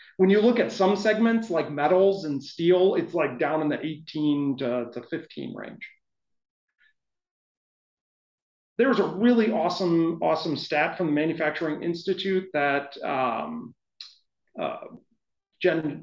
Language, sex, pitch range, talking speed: English, male, 145-205 Hz, 125 wpm